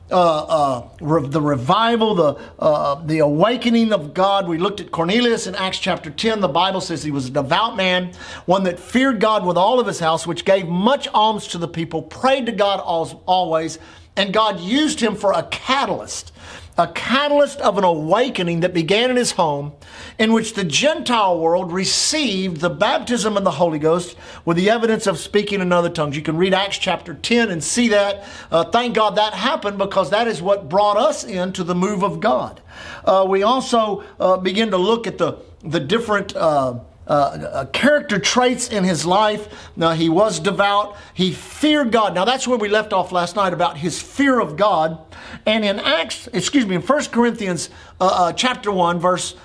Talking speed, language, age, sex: 190 wpm, English, 50-69, male